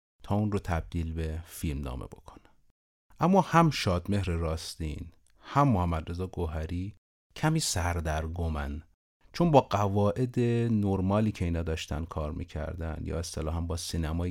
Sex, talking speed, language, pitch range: male, 145 wpm, Persian, 80-110 Hz